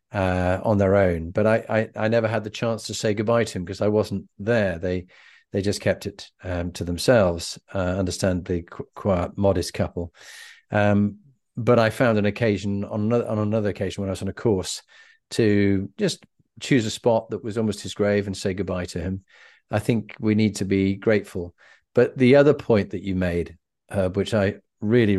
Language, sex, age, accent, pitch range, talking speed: English, male, 40-59, British, 95-120 Hz, 200 wpm